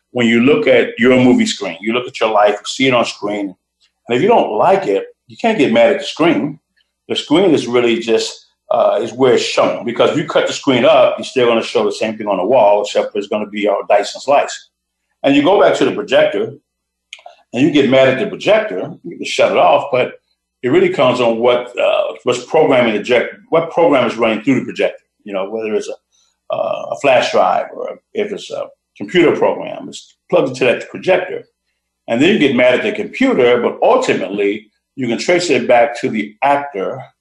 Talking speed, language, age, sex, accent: 225 wpm, English, 50-69, male, American